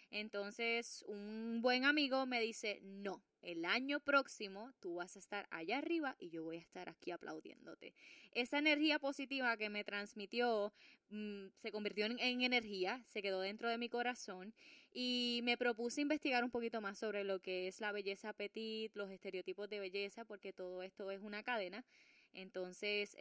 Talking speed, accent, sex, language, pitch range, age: 170 wpm, American, female, English, 200-245 Hz, 20-39